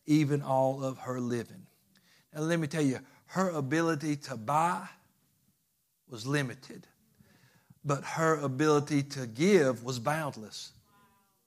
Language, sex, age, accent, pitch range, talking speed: English, male, 60-79, American, 145-215 Hz, 120 wpm